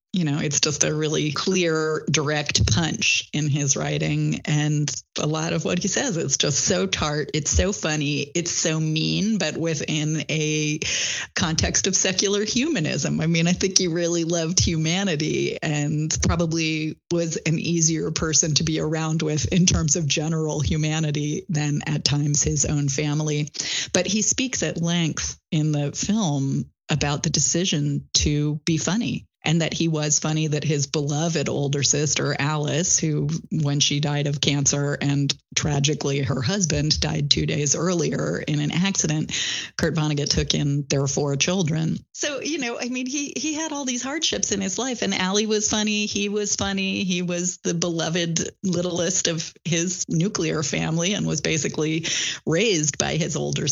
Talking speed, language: 170 wpm, English